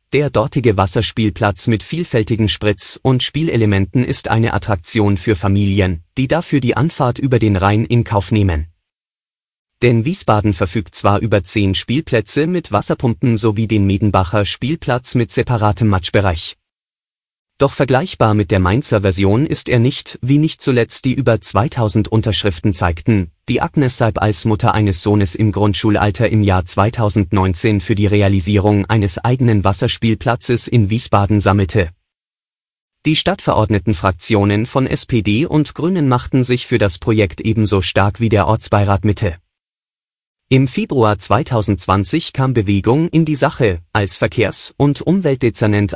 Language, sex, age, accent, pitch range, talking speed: German, male, 30-49, German, 100-125 Hz, 140 wpm